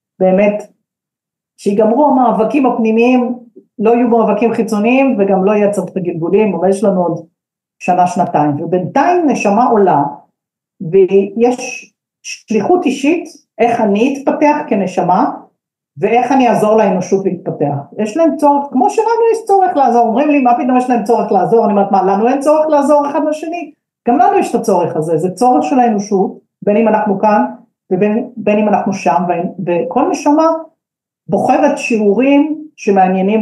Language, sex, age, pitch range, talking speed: Hebrew, female, 50-69, 190-250 Hz, 145 wpm